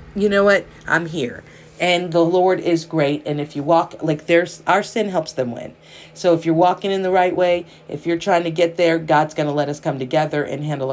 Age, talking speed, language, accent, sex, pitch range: 40-59, 240 wpm, English, American, female, 150-180 Hz